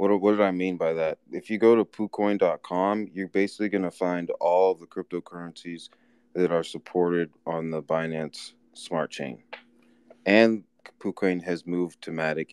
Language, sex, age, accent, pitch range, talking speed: English, male, 30-49, American, 80-95 Hz, 160 wpm